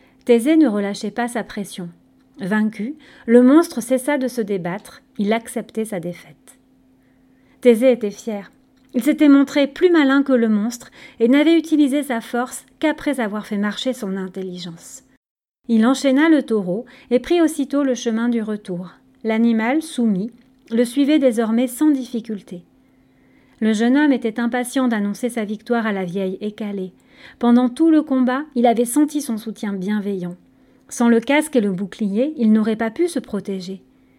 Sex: female